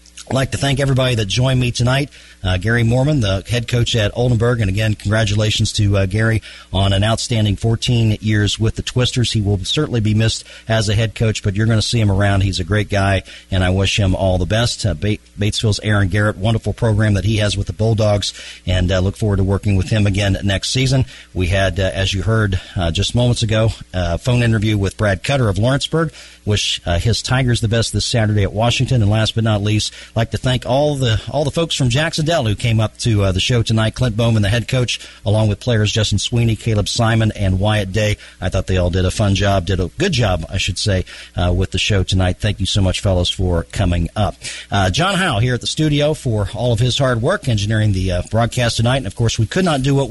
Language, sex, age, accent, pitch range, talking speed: English, male, 40-59, American, 100-120 Hz, 240 wpm